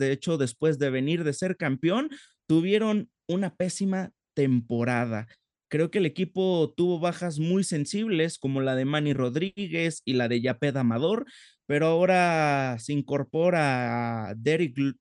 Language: Spanish